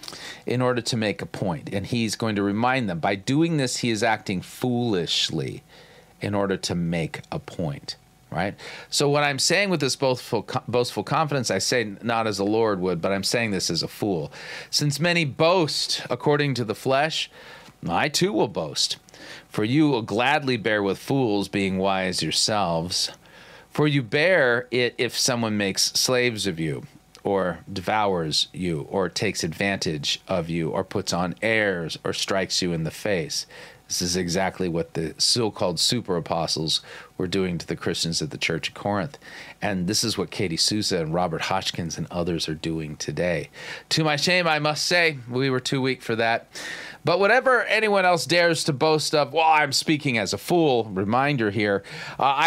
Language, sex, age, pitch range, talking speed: English, male, 40-59, 95-145 Hz, 185 wpm